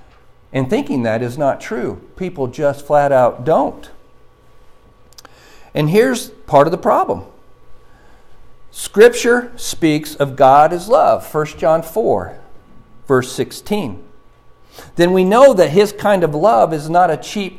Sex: male